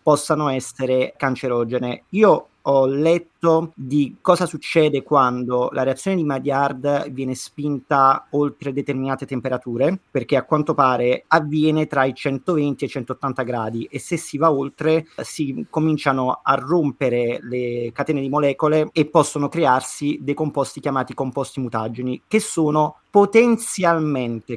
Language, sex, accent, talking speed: Italian, male, native, 135 wpm